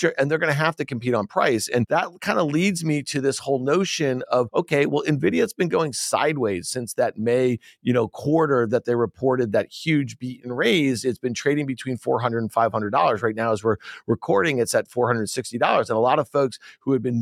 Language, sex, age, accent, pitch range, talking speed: English, male, 40-59, American, 130-160 Hz, 220 wpm